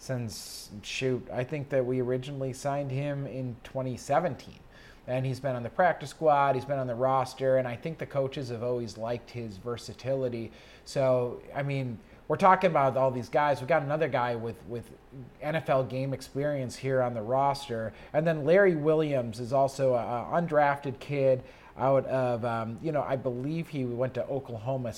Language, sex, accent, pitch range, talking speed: English, male, American, 125-145 Hz, 185 wpm